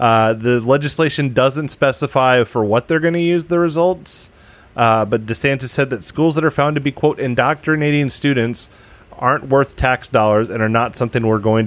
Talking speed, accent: 190 wpm, American